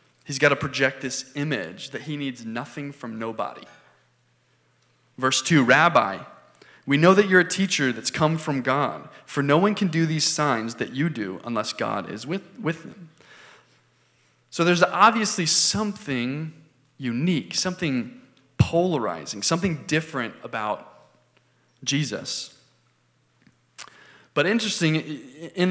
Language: English